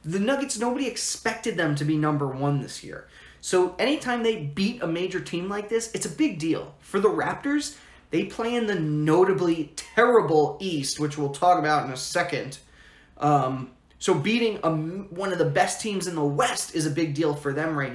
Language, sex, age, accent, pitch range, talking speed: English, male, 20-39, American, 150-195 Hz, 200 wpm